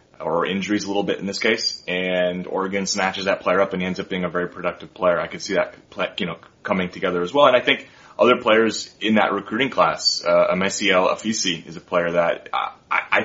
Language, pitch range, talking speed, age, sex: English, 90-100 Hz, 225 wpm, 20-39, male